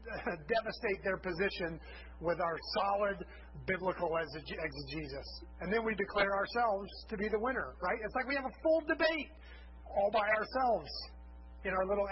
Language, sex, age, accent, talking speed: English, male, 40-59, American, 155 wpm